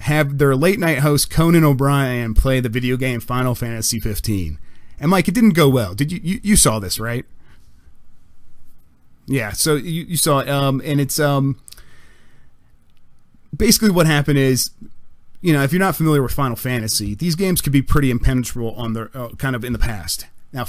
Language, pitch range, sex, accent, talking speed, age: English, 115-145 Hz, male, American, 190 wpm, 30-49